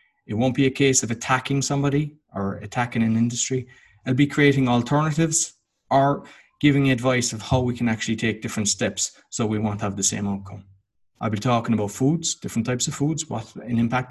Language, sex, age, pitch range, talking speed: English, male, 30-49, 110-145 Hz, 195 wpm